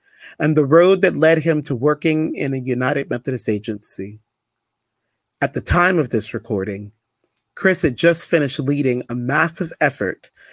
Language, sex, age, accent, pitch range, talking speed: English, male, 40-59, American, 115-165 Hz, 155 wpm